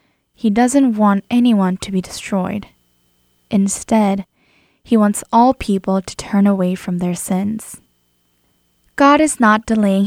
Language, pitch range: Korean, 190-225 Hz